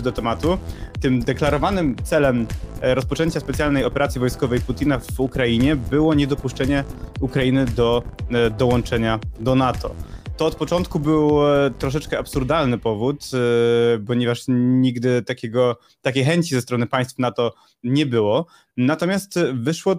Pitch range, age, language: 120-145 Hz, 20-39, Polish